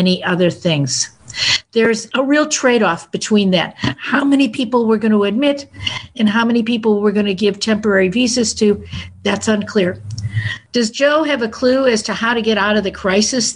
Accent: American